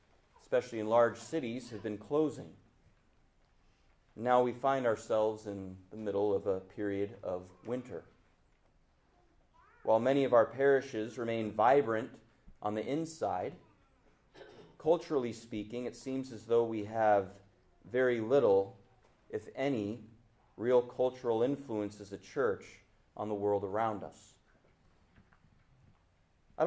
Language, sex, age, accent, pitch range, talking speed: English, male, 30-49, American, 100-115 Hz, 120 wpm